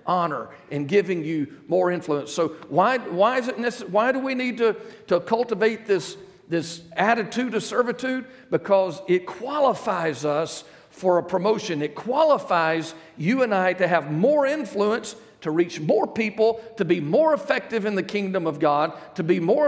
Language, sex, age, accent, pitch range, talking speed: English, male, 50-69, American, 155-220 Hz, 170 wpm